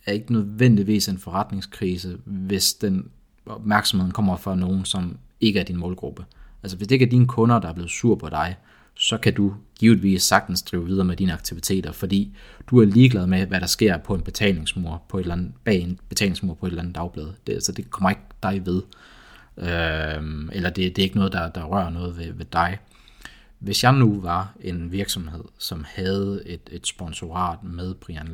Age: 30-49